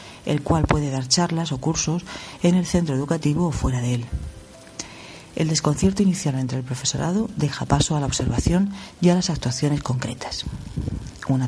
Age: 40-59